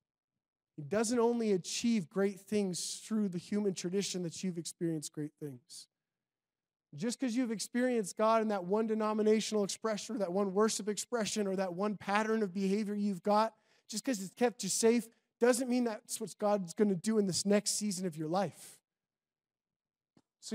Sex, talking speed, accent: male, 170 wpm, American